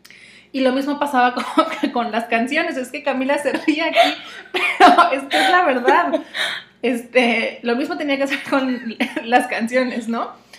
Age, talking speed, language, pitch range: 30-49, 165 wpm, Spanish, 215-255 Hz